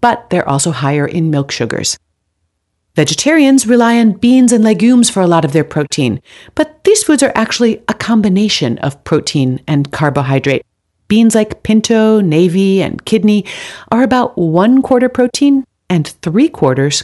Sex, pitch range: female, 145-235 Hz